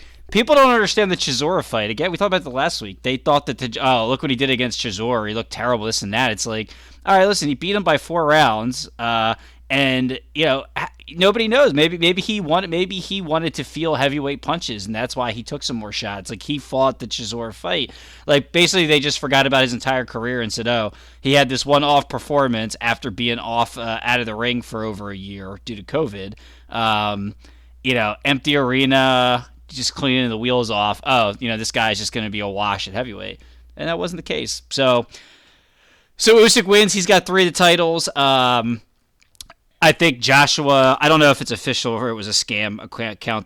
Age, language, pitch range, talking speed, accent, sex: 20-39, English, 110-145 Hz, 220 wpm, American, male